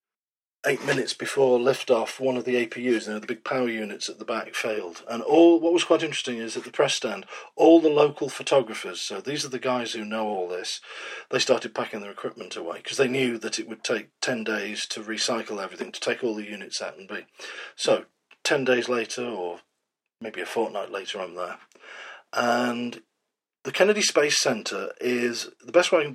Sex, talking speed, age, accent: male, 205 wpm, 40-59, British